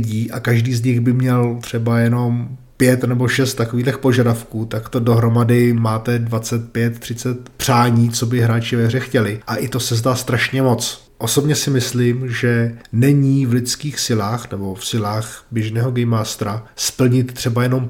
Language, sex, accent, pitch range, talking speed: Czech, male, native, 115-130 Hz, 170 wpm